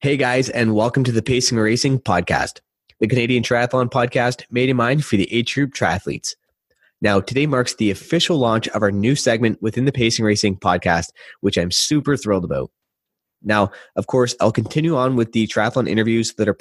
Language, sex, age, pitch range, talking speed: English, male, 20-39, 105-130 Hz, 190 wpm